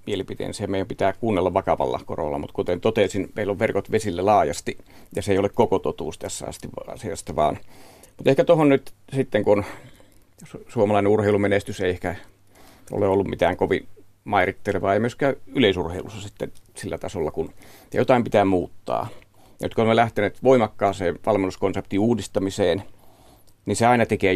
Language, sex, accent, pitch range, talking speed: Finnish, male, native, 95-115 Hz, 150 wpm